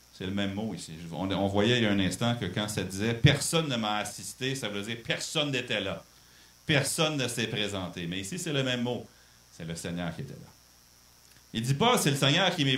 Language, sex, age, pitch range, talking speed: French, male, 40-59, 80-120 Hz, 245 wpm